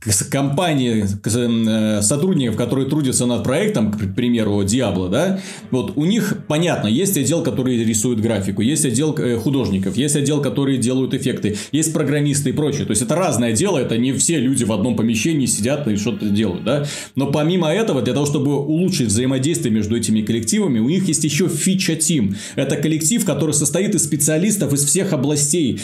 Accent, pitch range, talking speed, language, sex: native, 125-170 Hz, 170 wpm, Russian, male